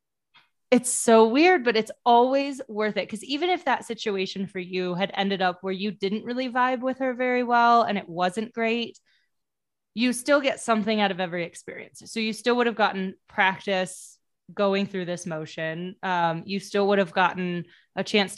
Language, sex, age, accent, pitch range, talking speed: English, female, 20-39, American, 185-235 Hz, 190 wpm